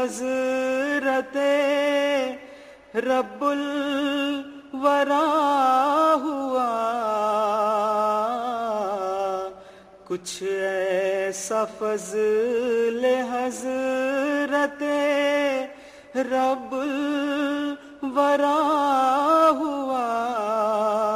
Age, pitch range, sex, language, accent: 30-49, 155-250 Hz, male, English, Indian